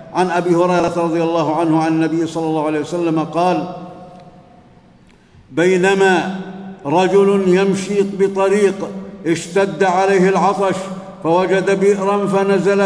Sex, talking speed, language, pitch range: male, 105 wpm, Arabic, 175-195 Hz